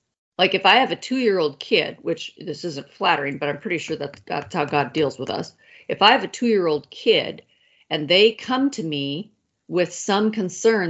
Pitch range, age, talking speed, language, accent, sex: 160-230 Hz, 40-59, 195 wpm, English, American, female